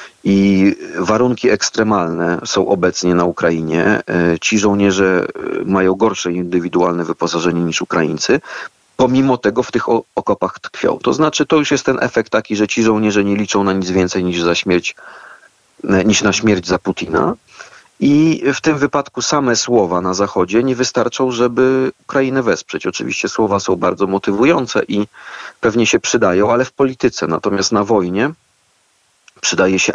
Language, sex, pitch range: Polish, male, 90-110 Hz